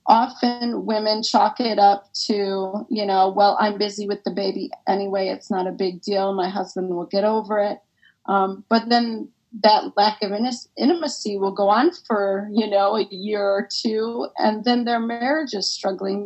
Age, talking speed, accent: 30-49, 180 wpm, American